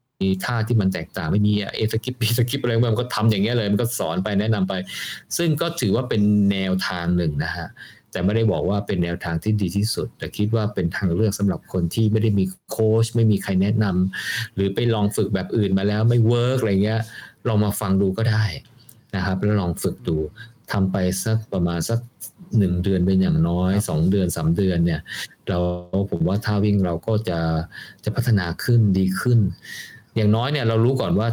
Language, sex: Thai, male